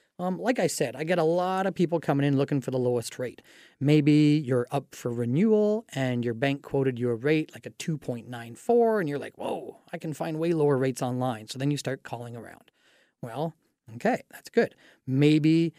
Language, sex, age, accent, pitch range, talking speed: English, male, 30-49, American, 140-185 Hz, 205 wpm